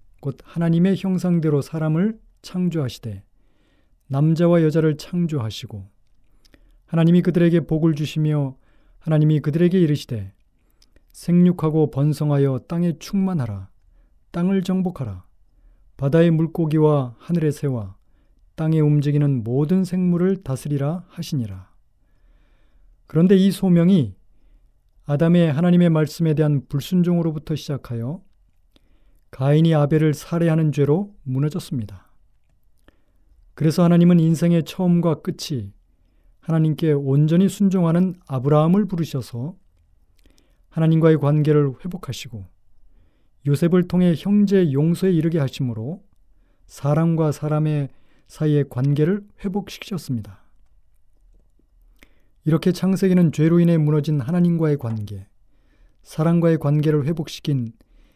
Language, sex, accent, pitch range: Korean, male, native, 130-170 Hz